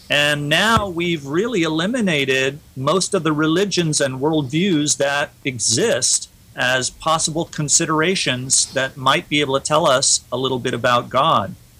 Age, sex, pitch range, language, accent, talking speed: 40-59, male, 125-155 Hz, English, American, 140 wpm